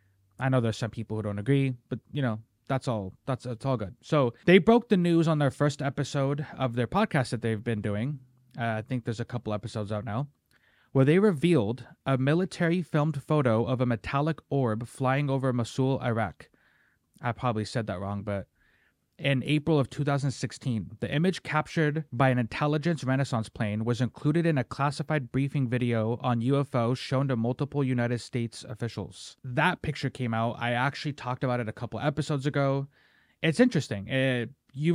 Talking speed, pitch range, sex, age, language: 185 wpm, 115-145 Hz, male, 20-39, English